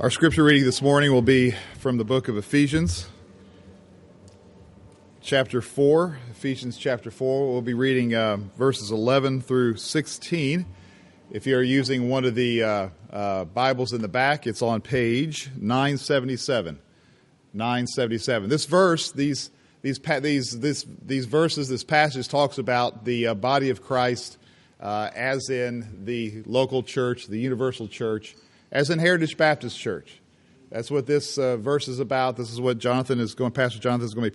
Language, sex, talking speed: English, male, 160 wpm